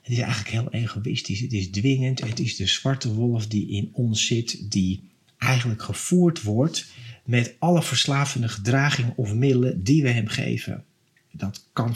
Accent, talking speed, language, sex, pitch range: Dutch, 165 wpm, Dutch, male, 110-135 Hz